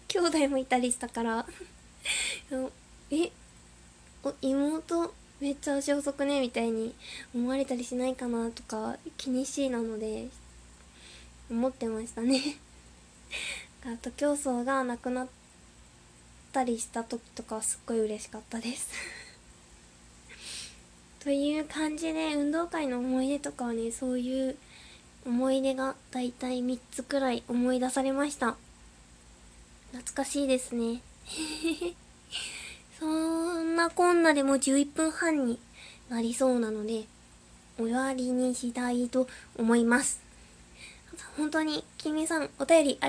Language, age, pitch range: Japanese, 20-39, 230-290 Hz